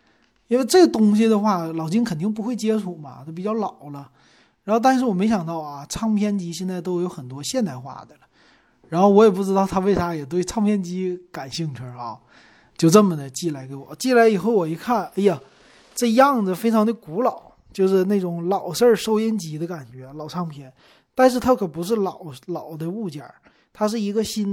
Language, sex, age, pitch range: Chinese, male, 20-39, 165-225 Hz